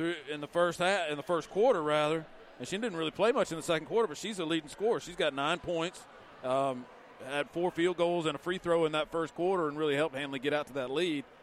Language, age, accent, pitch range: English, 40-59, American, 140-165 Hz